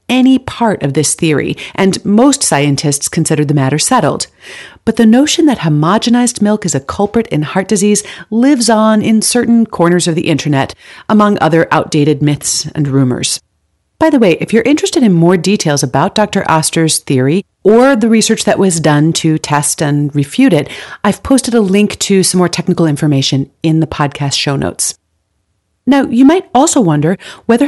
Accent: American